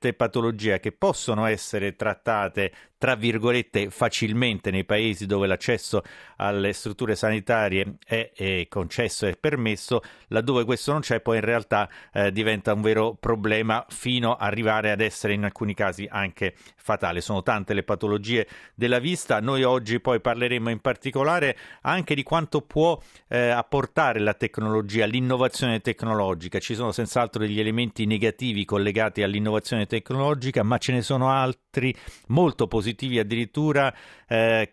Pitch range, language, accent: 105-120 Hz, Italian, native